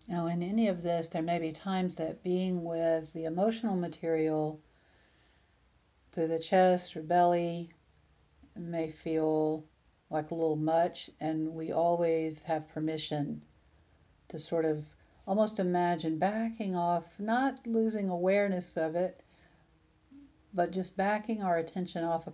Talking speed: 135 wpm